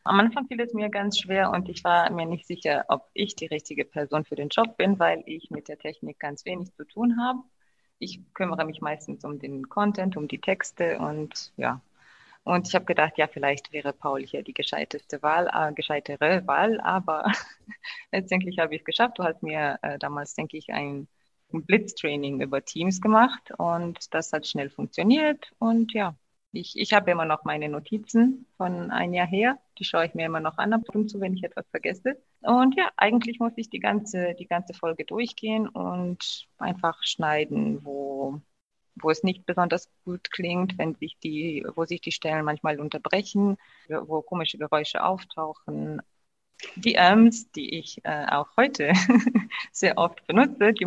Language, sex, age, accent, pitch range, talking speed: German, female, 20-39, German, 155-205 Hz, 185 wpm